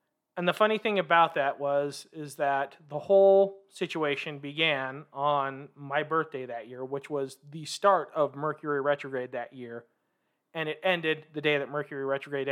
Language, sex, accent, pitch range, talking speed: English, male, American, 140-180 Hz, 170 wpm